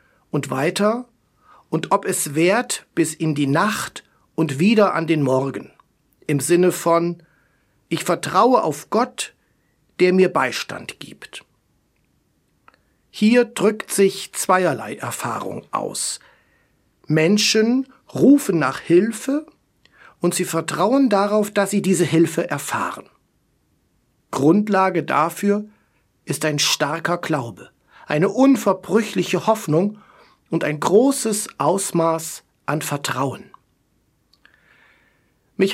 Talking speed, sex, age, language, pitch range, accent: 100 wpm, male, 60-79, German, 160-205 Hz, German